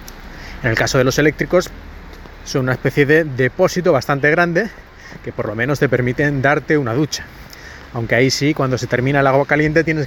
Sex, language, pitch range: male, Spanish, 125-165 Hz